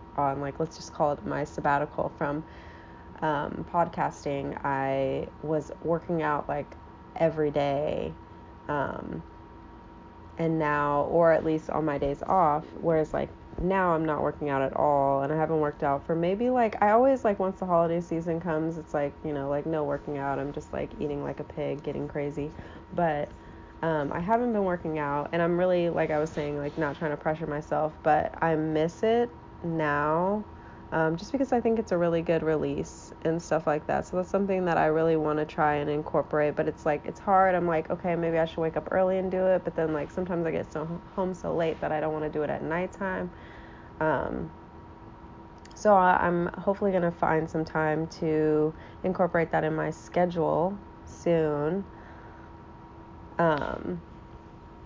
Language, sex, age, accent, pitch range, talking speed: English, female, 20-39, American, 145-170 Hz, 190 wpm